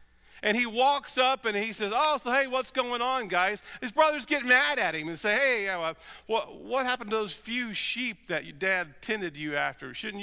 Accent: American